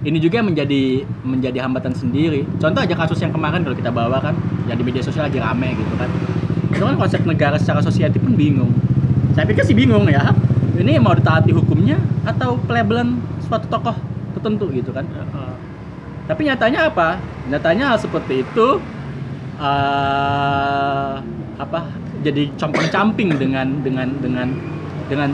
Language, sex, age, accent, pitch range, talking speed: Indonesian, male, 20-39, native, 130-170 Hz, 145 wpm